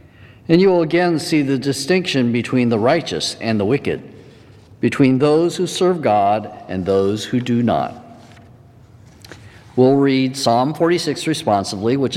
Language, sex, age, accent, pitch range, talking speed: English, male, 50-69, American, 105-135 Hz, 145 wpm